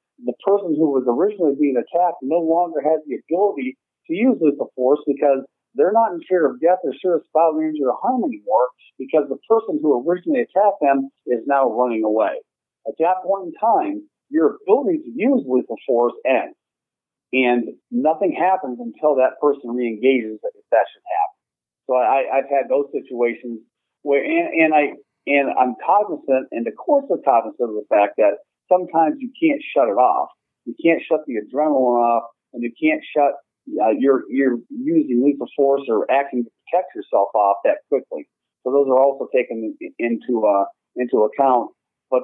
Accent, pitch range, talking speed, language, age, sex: American, 120-180 Hz, 180 wpm, English, 50-69, male